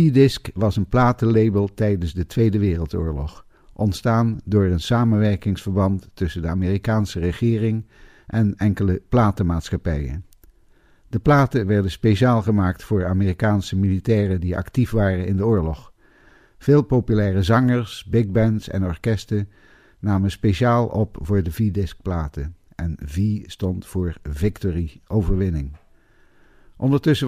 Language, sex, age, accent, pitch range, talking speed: Dutch, male, 60-79, Dutch, 95-115 Hz, 120 wpm